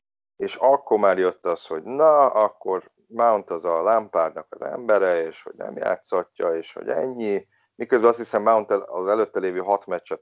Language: Hungarian